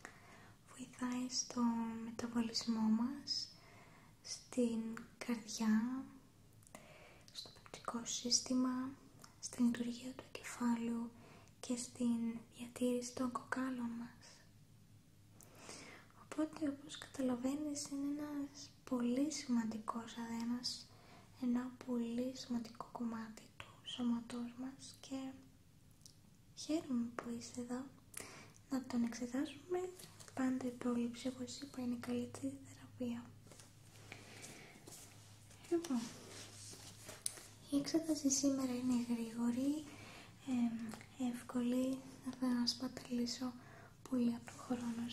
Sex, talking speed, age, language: female, 85 wpm, 20-39, English